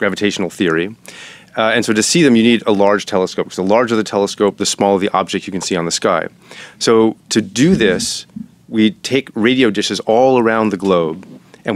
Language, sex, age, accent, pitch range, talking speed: English, male, 30-49, American, 100-120 Hz, 205 wpm